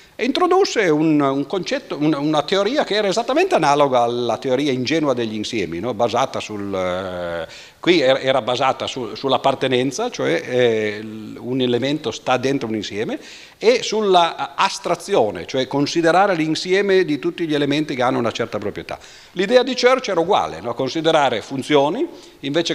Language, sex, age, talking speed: Italian, male, 50-69, 155 wpm